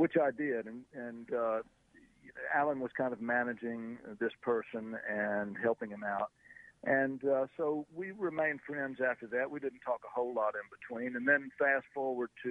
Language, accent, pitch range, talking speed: English, American, 115-140 Hz, 180 wpm